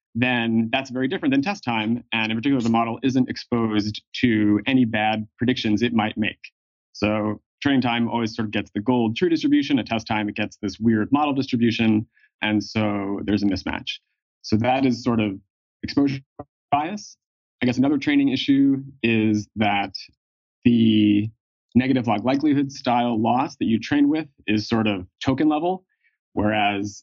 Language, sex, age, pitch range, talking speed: English, male, 30-49, 105-130 Hz, 170 wpm